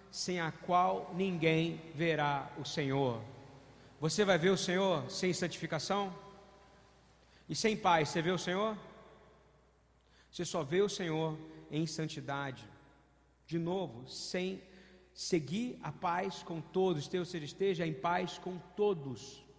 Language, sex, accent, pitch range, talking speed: Portuguese, male, Brazilian, 155-200 Hz, 130 wpm